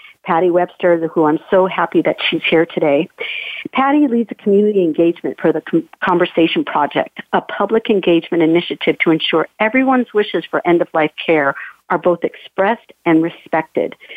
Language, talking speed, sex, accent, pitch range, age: English, 150 wpm, female, American, 170-210 Hz, 50-69